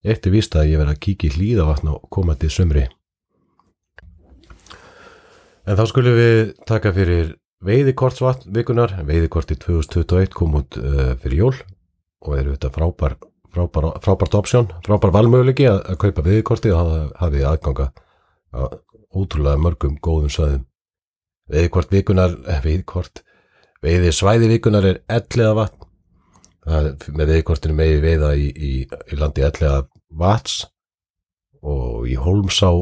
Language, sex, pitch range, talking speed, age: English, male, 75-100 Hz, 130 wpm, 40-59